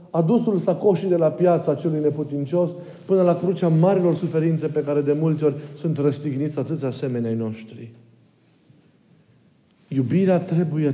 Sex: male